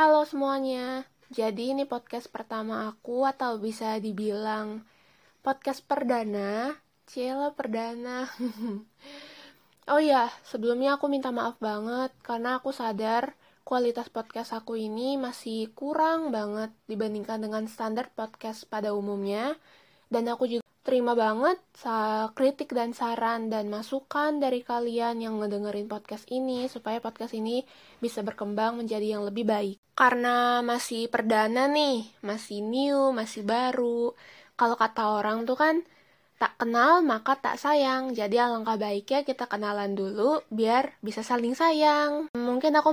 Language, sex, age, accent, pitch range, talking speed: Indonesian, female, 20-39, native, 220-260 Hz, 130 wpm